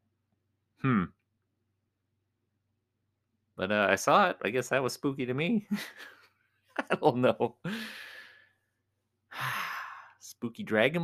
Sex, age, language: male, 30-49, English